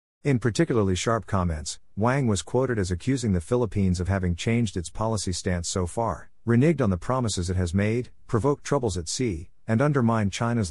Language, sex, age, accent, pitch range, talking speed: English, male, 50-69, American, 90-115 Hz, 185 wpm